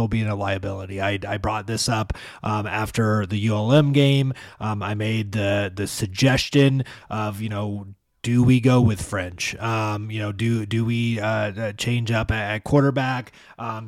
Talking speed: 170 wpm